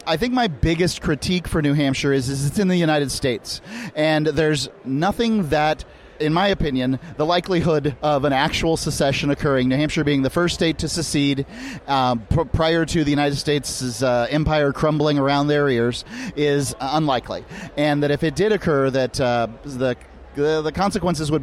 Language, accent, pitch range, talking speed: English, American, 140-170 Hz, 180 wpm